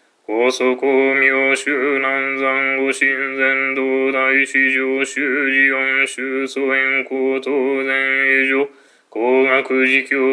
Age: 20-39